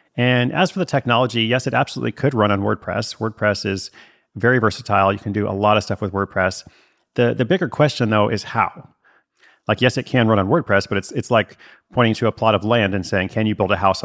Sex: male